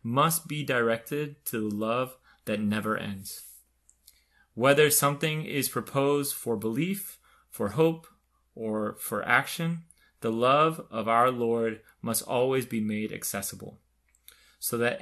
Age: 30-49